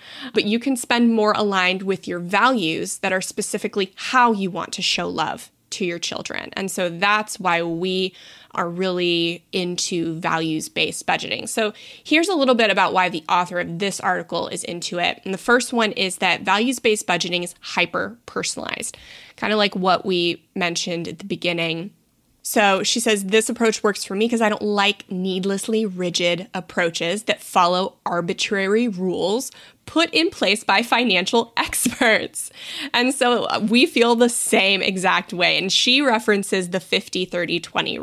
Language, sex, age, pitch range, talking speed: English, female, 20-39, 180-230 Hz, 165 wpm